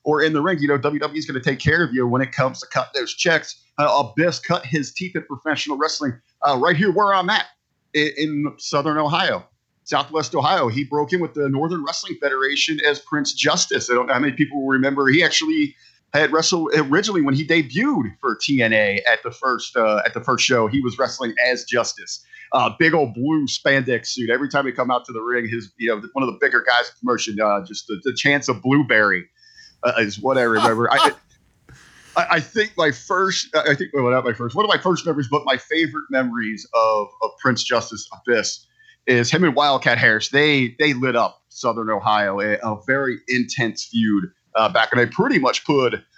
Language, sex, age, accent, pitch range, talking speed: English, male, 40-59, American, 125-155 Hz, 215 wpm